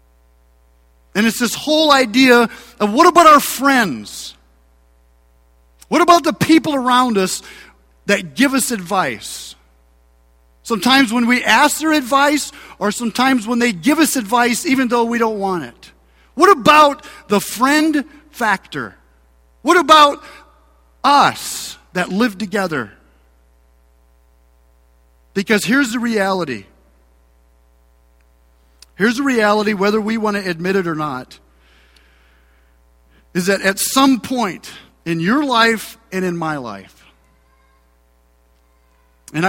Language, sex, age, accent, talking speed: English, male, 40-59, American, 120 wpm